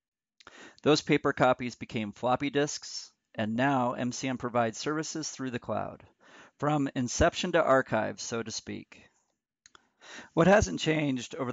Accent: American